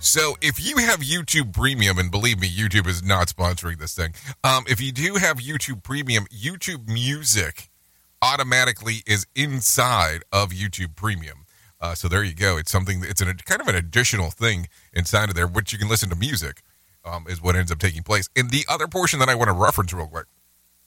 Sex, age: male, 30-49